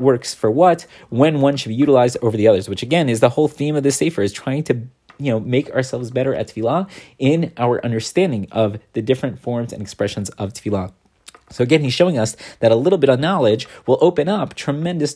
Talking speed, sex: 220 wpm, male